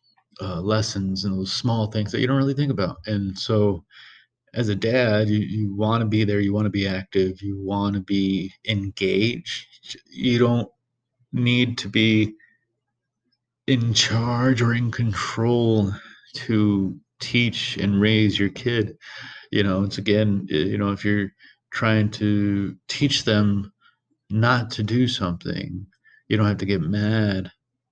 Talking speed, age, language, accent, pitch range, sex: 150 wpm, 30-49, English, American, 105-125 Hz, male